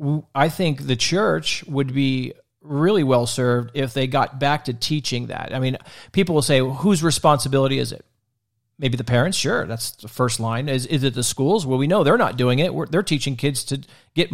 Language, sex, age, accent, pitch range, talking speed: English, male, 40-59, American, 120-135 Hz, 220 wpm